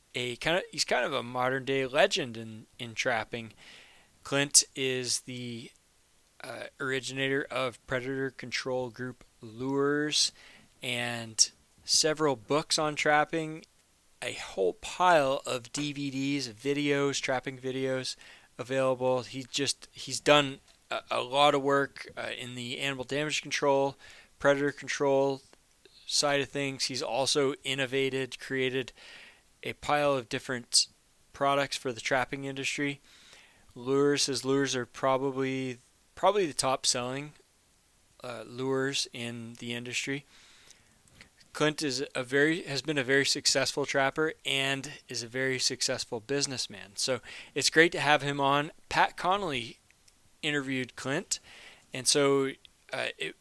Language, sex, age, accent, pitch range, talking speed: English, male, 20-39, American, 125-140 Hz, 130 wpm